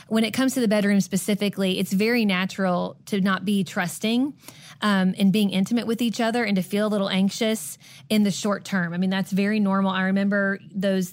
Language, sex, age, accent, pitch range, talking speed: English, female, 20-39, American, 185-215 Hz, 210 wpm